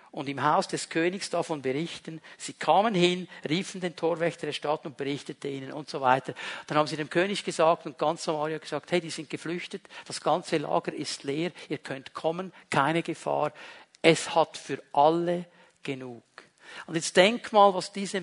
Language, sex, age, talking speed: German, male, 50-69, 190 wpm